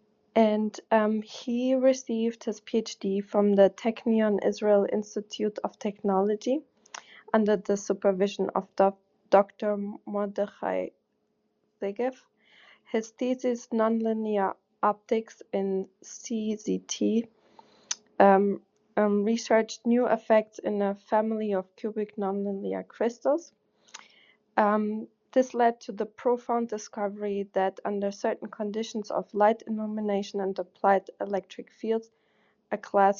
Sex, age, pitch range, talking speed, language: female, 20-39, 200-230 Hz, 105 wpm, English